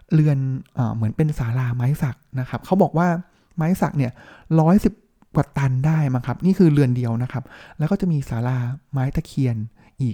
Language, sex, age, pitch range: Thai, male, 20-39, 125-160 Hz